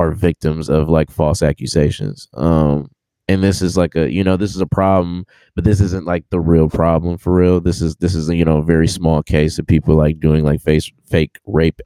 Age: 20-39